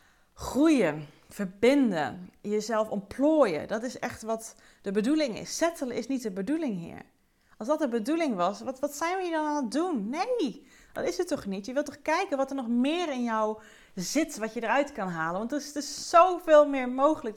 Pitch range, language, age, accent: 190-265 Hz, Dutch, 30-49, Dutch